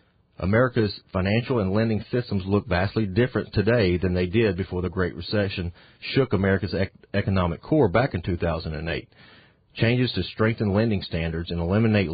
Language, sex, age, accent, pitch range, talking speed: English, male, 40-59, American, 90-110 Hz, 150 wpm